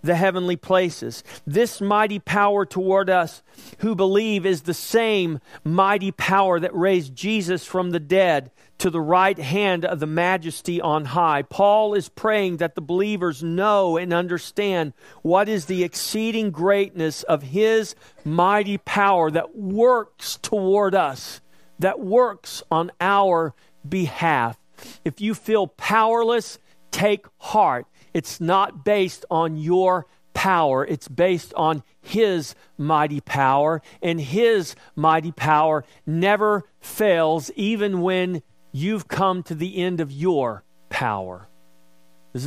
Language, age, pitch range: English, 40-59, 150-200 Hz